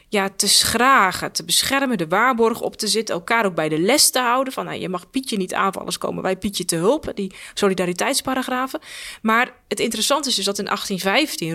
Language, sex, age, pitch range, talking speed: Dutch, female, 20-39, 185-235 Hz, 205 wpm